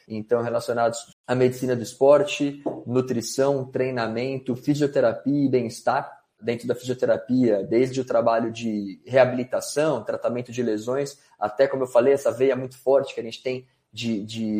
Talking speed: 150 wpm